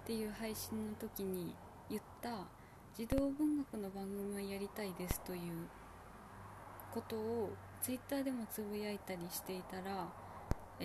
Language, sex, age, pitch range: Japanese, female, 20-39, 185-240 Hz